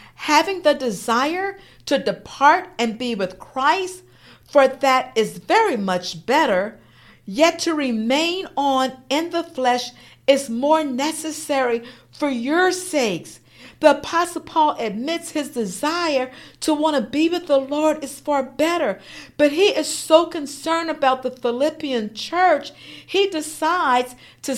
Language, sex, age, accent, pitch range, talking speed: English, female, 50-69, American, 250-320 Hz, 135 wpm